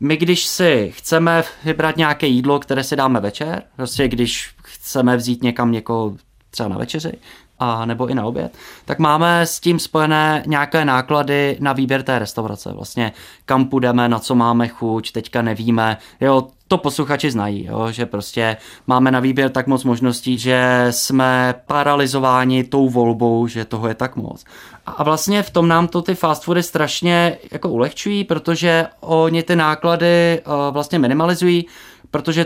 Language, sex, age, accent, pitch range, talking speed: Czech, male, 20-39, native, 115-155 Hz, 160 wpm